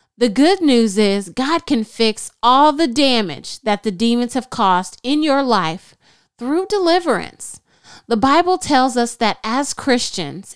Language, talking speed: English, 155 wpm